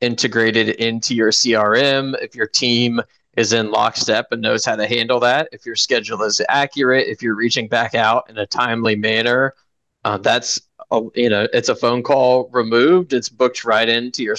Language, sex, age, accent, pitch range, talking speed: English, male, 20-39, American, 115-125 Hz, 190 wpm